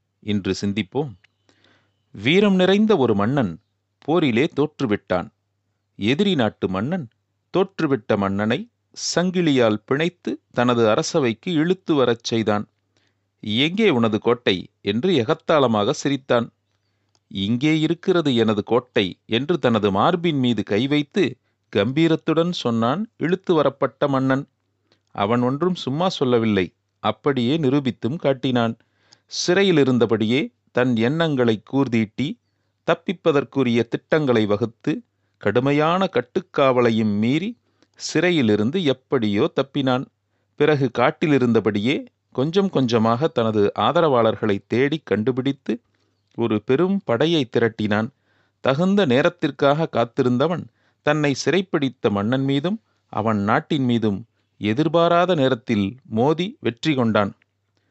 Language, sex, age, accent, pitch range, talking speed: Tamil, male, 40-59, native, 105-150 Hz, 90 wpm